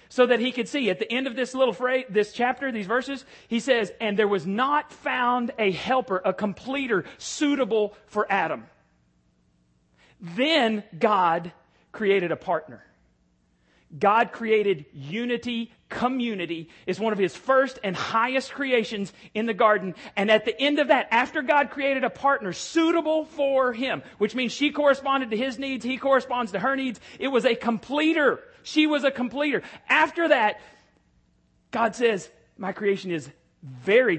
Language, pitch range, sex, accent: English, 180-255 Hz, male, American